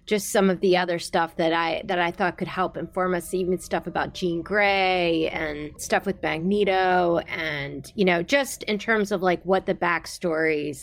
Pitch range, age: 165-190 Hz, 30-49